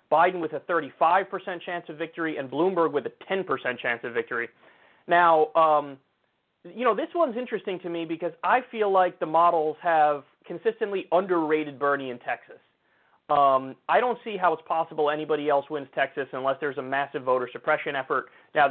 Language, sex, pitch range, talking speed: English, male, 145-180 Hz, 175 wpm